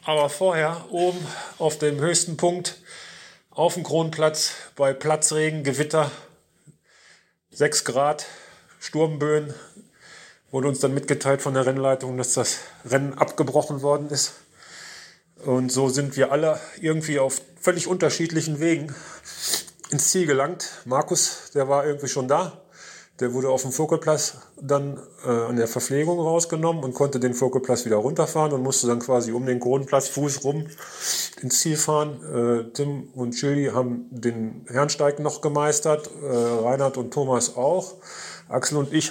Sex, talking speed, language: male, 145 wpm, German